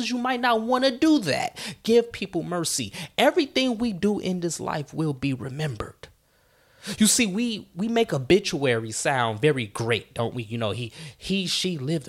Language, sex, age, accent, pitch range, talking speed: English, male, 20-39, American, 130-195 Hz, 180 wpm